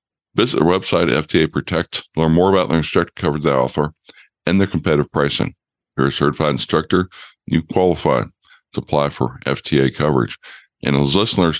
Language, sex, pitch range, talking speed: English, male, 80-95 Hz, 160 wpm